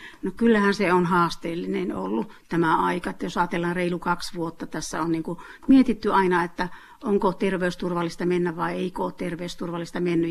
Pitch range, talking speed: 180-230 Hz, 170 wpm